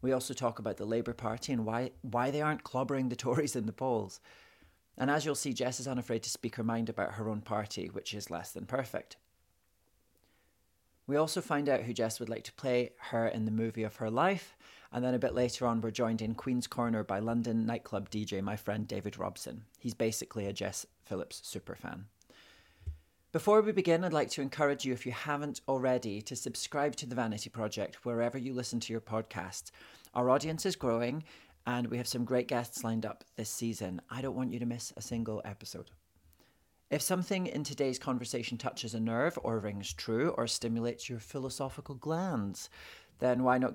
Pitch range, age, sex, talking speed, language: 105-130 Hz, 30-49, male, 200 wpm, English